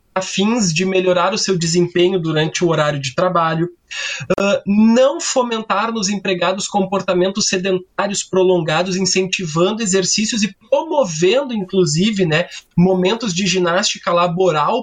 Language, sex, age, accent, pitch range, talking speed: Portuguese, male, 20-39, Brazilian, 180-230 Hz, 115 wpm